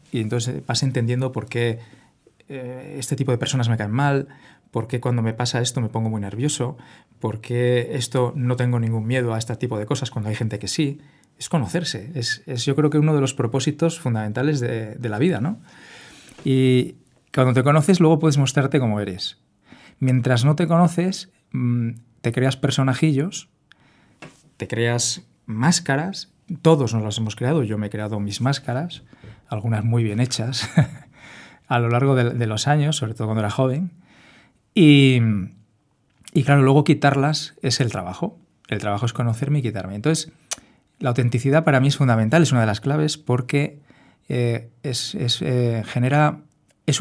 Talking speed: 175 wpm